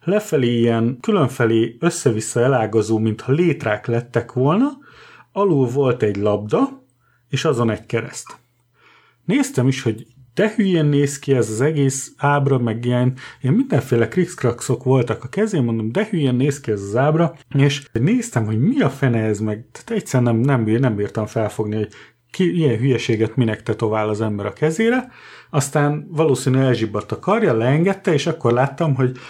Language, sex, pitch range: Hungarian, male, 115-145 Hz